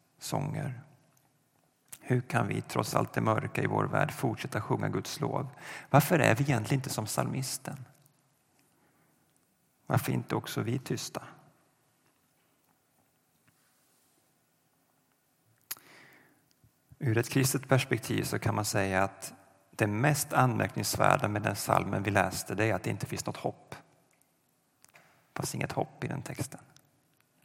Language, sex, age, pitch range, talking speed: Swedish, male, 40-59, 110-145 Hz, 125 wpm